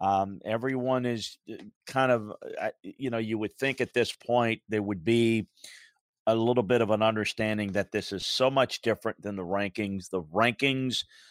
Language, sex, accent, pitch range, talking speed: English, male, American, 110-130 Hz, 175 wpm